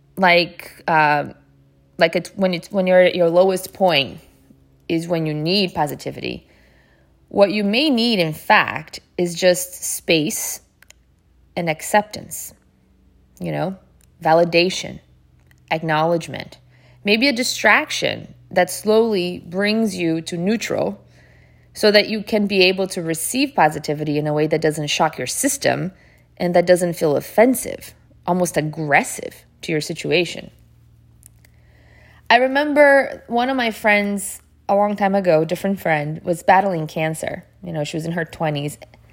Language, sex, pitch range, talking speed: English, female, 155-200 Hz, 140 wpm